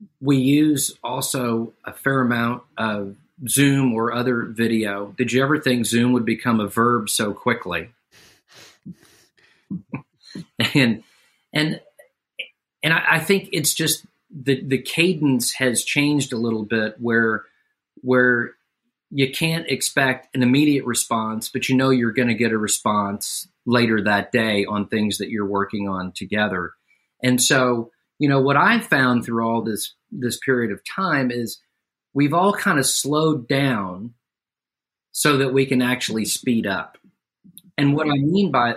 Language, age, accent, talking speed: English, 40-59, American, 150 wpm